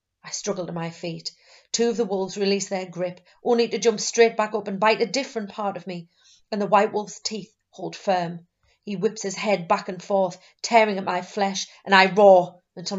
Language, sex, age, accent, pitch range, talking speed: English, female, 30-49, British, 180-210 Hz, 215 wpm